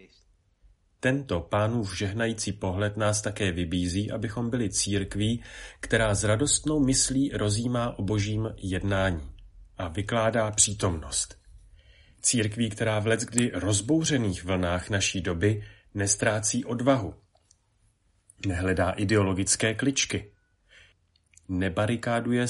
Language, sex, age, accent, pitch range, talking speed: Czech, male, 40-59, native, 95-110 Hz, 95 wpm